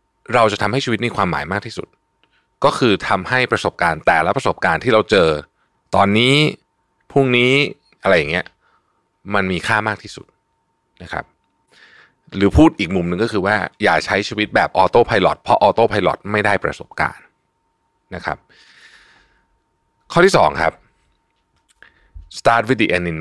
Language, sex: Thai, male